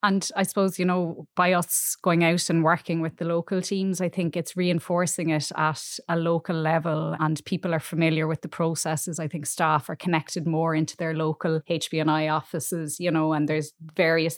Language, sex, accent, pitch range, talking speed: English, female, Irish, 160-175 Hz, 195 wpm